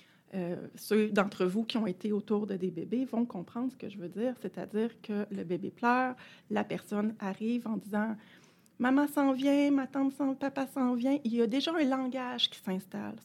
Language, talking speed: French, 220 wpm